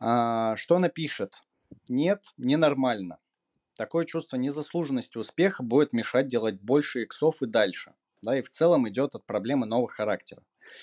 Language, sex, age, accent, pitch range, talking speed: Russian, male, 30-49, native, 110-155 Hz, 140 wpm